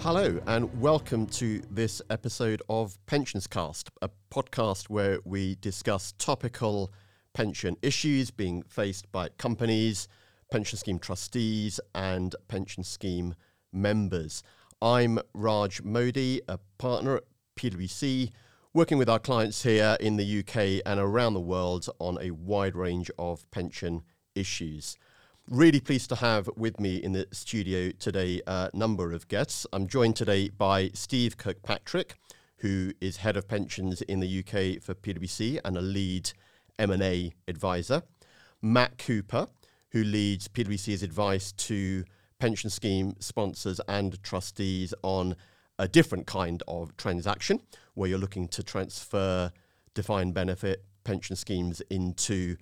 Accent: British